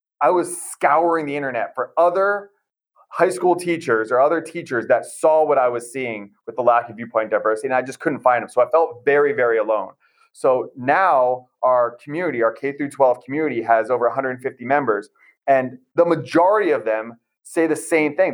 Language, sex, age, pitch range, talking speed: English, male, 30-49, 115-160 Hz, 195 wpm